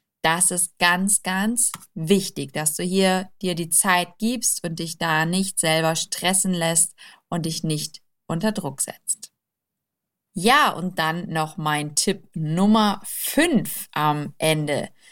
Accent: German